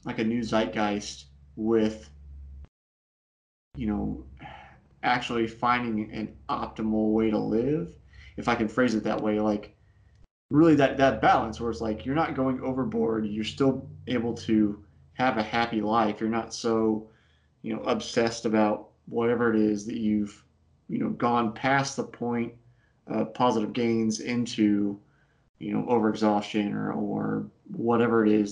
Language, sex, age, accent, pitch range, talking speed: English, male, 30-49, American, 105-120 Hz, 150 wpm